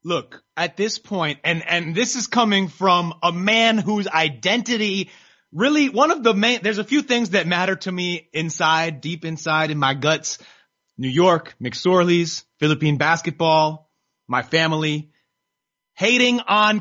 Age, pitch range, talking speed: 30-49, 155-210 Hz, 155 wpm